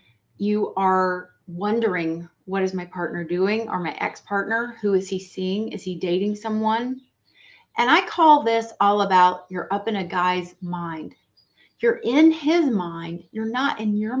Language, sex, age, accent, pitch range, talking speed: English, female, 30-49, American, 190-260 Hz, 165 wpm